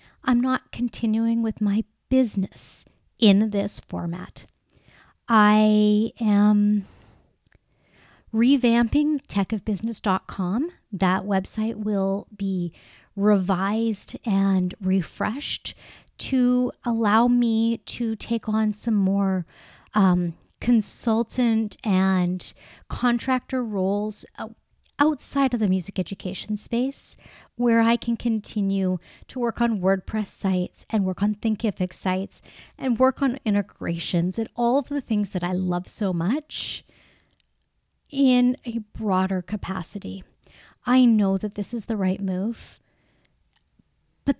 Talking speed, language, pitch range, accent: 110 wpm, English, 195-235 Hz, American